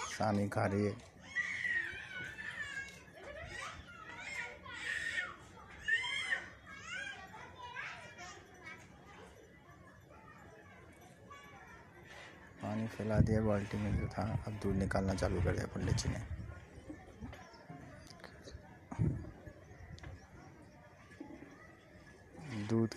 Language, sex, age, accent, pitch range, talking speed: Hindi, male, 30-49, native, 95-110 Hz, 45 wpm